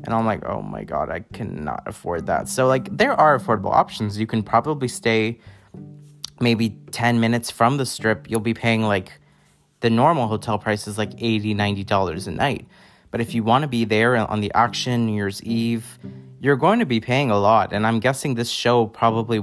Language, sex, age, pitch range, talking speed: English, male, 30-49, 105-120 Hz, 205 wpm